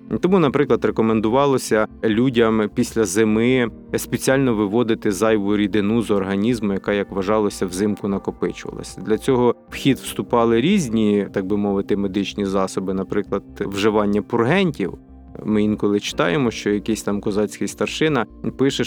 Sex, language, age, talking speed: male, Ukrainian, 20-39, 125 wpm